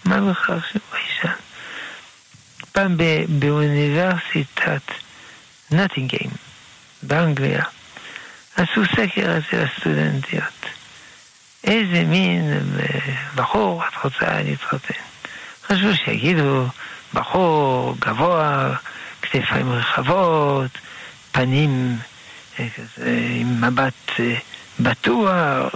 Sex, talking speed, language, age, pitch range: male, 70 wpm, Hebrew, 60-79, 130-175 Hz